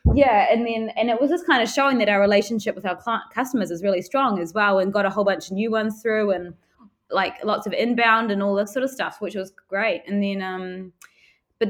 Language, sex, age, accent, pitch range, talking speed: English, female, 20-39, Australian, 175-215 Hz, 250 wpm